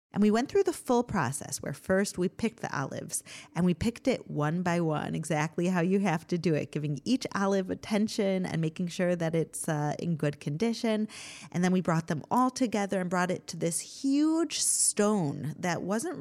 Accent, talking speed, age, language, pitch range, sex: American, 205 wpm, 30-49, English, 160-215 Hz, female